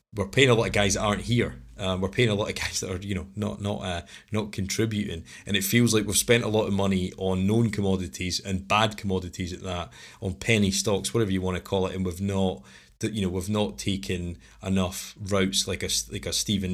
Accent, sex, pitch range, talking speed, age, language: British, male, 95-110 Hz, 245 wpm, 20-39, English